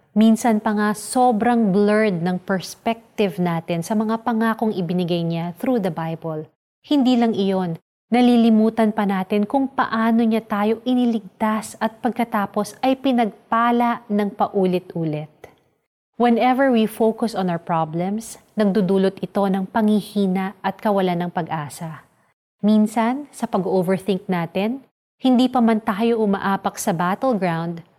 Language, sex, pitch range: Filipino, female, 175-225 Hz